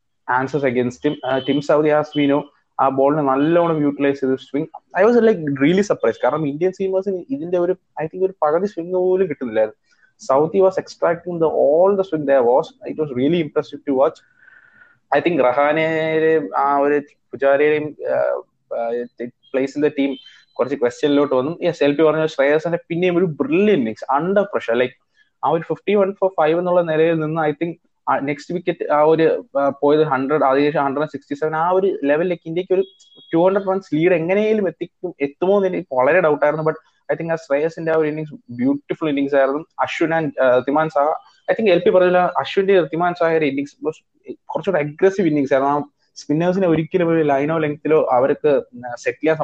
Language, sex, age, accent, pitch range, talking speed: English, male, 20-39, Indian, 140-175 Hz, 170 wpm